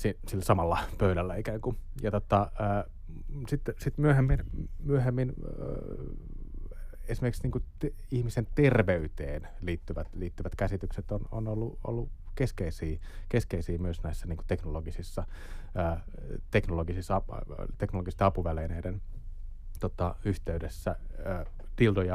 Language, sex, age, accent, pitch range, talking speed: Finnish, male, 30-49, native, 85-100 Hz, 80 wpm